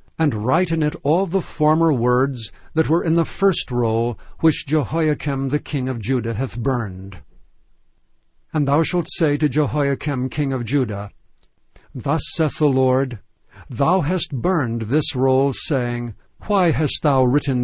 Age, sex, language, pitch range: 60-79, male, English, 125-155 Hz